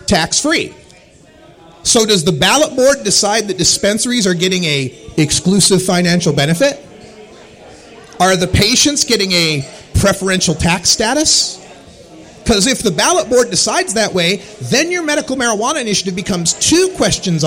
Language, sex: English, male